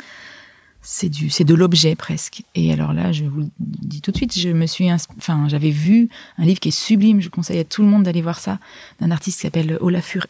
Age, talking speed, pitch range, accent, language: 30-49, 245 wpm, 155-180 Hz, French, French